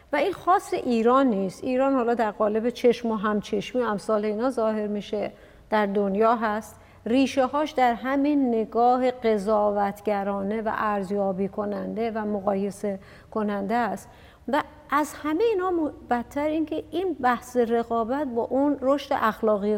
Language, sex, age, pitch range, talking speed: Persian, female, 50-69, 210-260 Hz, 135 wpm